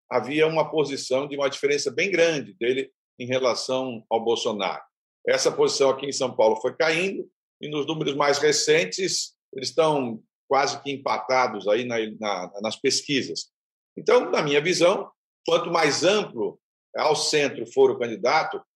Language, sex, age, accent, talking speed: Portuguese, male, 50-69, Brazilian, 155 wpm